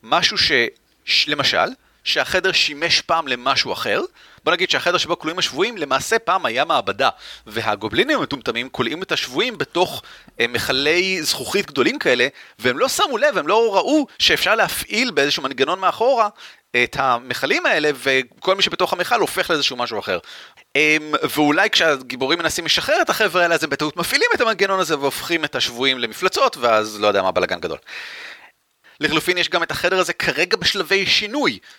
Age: 30-49